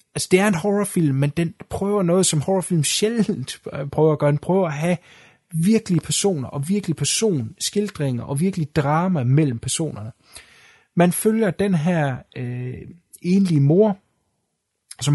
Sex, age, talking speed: male, 30-49, 150 wpm